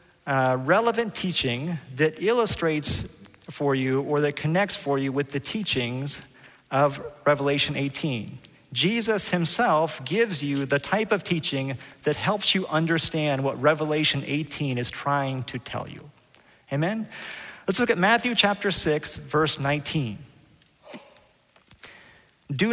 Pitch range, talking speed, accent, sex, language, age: 145-205 Hz, 125 wpm, American, male, English, 40-59